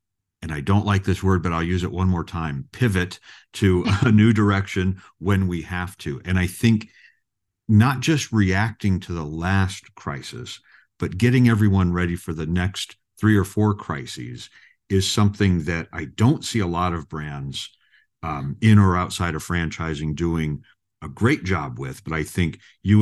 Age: 50-69